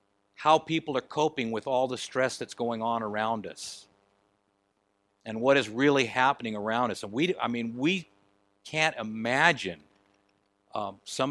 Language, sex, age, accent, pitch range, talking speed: English, male, 60-79, American, 100-130 Hz, 155 wpm